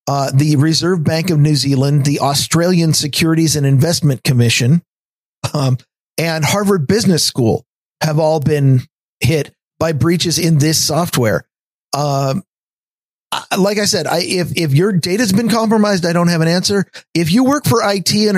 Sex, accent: male, American